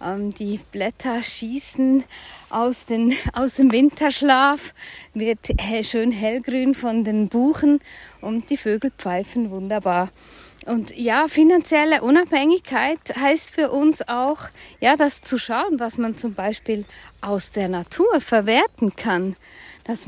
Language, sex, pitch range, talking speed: German, female, 225-285 Hz, 125 wpm